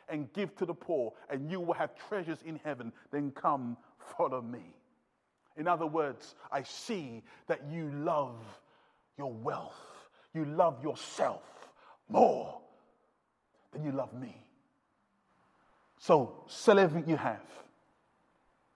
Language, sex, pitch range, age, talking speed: English, male, 145-220 Hz, 30-49, 125 wpm